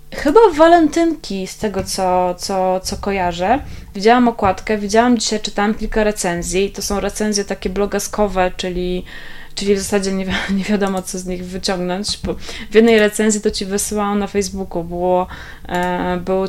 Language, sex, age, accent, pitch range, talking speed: Polish, female, 20-39, native, 185-215 Hz, 155 wpm